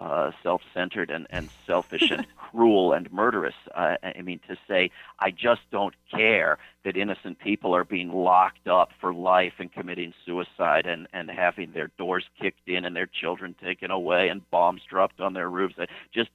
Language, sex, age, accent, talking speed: English, male, 50-69, American, 185 wpm